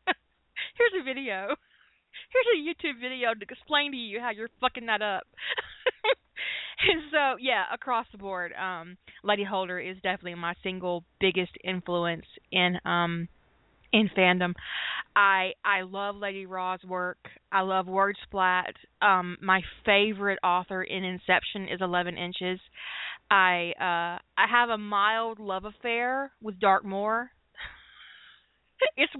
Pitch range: 180-240 Hz